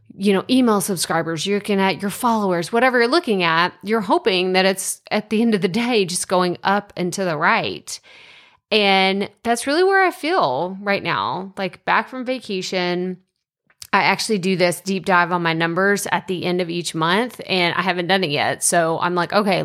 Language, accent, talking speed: English, American, 205 wpm